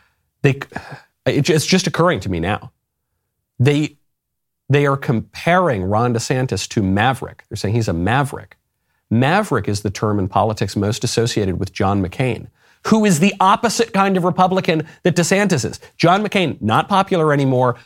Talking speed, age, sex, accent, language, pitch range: 150 wpm, 40-59, male, American, English, 105-170 Hz